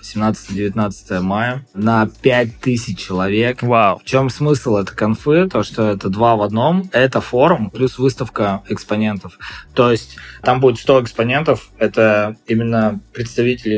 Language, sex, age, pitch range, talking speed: Russian, male, 20-39, 100-125 Hz, 135 wpm